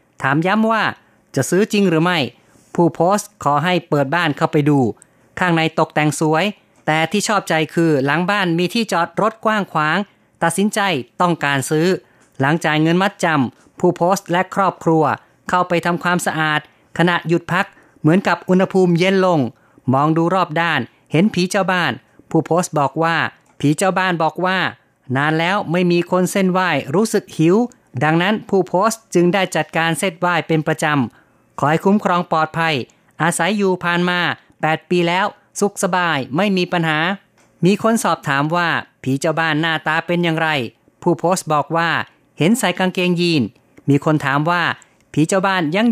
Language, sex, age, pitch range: Thai, female, 30-49, 155-185 Hz